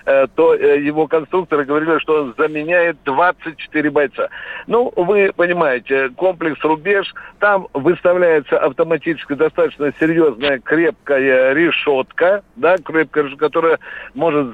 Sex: male